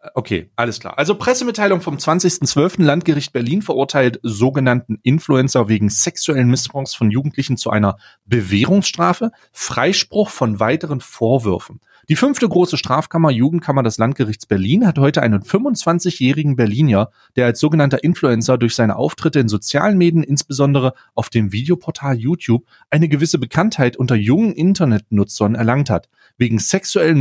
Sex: male